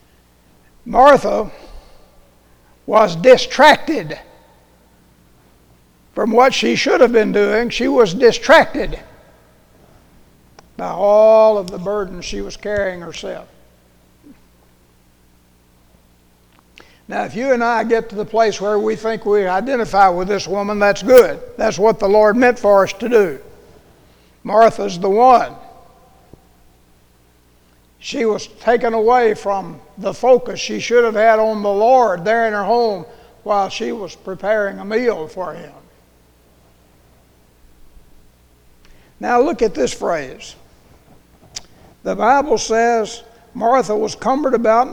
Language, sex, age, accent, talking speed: English, male, 60-79, American, 120 wpm